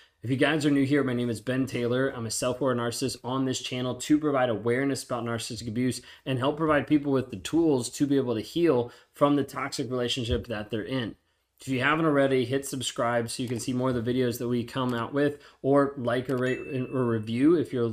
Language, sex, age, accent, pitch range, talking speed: English, male, 20-39, American, 115-135 Hz, 235 wpm